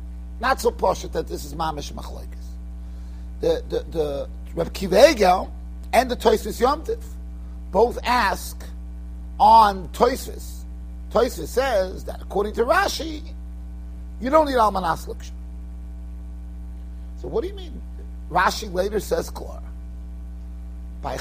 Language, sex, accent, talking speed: English, male, American, 115 wpm